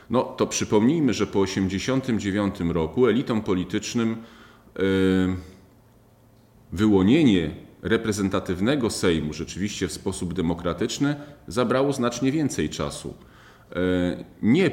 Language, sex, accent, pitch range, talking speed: Polish, male, native, 95-120 Hz, 85 wpm